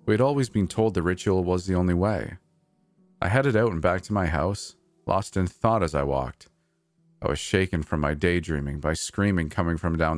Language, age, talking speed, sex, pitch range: English, 40-59, 210 wpm, male, 80-120 Hz